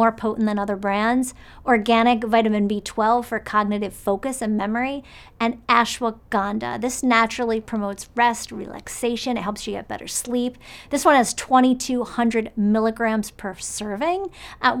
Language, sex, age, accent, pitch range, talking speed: English, female, 40-59, American, 205-240 Hz, 140 wpm